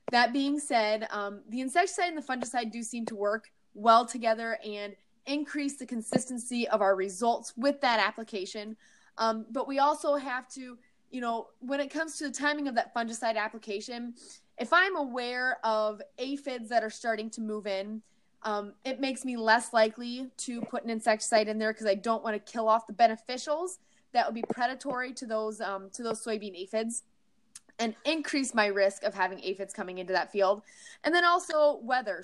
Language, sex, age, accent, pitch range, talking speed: English, female, 20-39, American, 215-260 Hz, 185 wpm